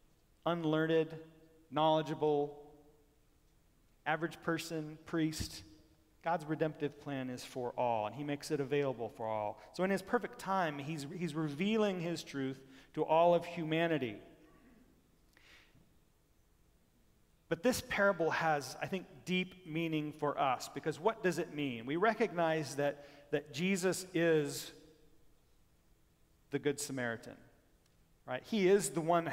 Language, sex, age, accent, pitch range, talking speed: English, male, 40-59, American, 145-180 Hz, 125 wpm